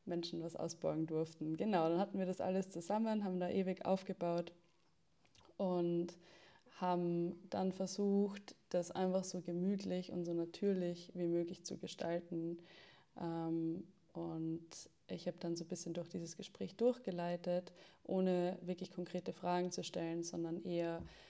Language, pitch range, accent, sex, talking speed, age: German, 165-180 Hz, German, female, 140 wpm, 20-39